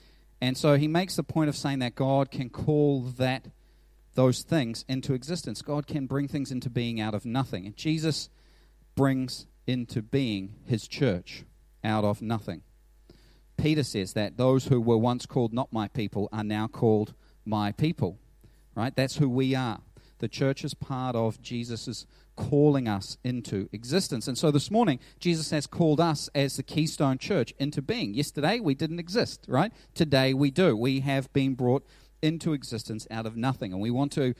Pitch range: 115-145 Hz